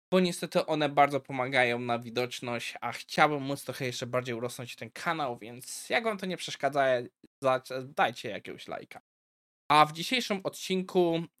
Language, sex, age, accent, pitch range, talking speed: Polish, male, 20-39, native, 135-185 Hz, 155 wpm